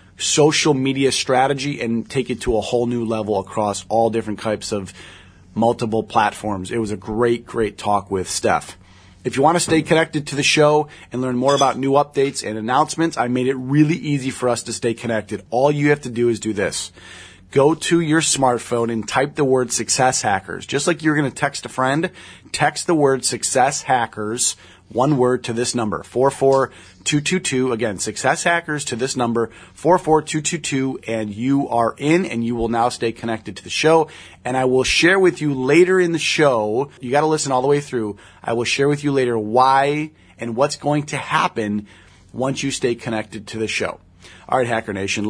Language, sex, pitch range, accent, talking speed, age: English, male, 110-145 Hz, American, 200 wpm, 30-49